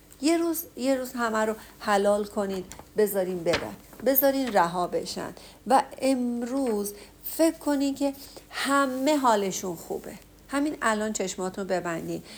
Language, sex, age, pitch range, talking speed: Persian, female, 50-69, 195-275 Hz, 120 wpm